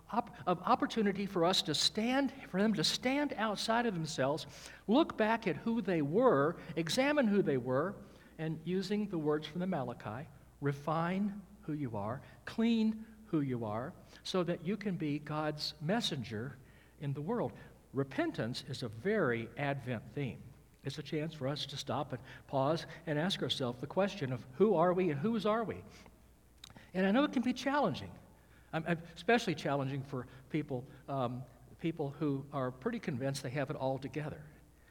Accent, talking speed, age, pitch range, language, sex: American, 170 wpm, 60-79, 130-190 Hz, English, male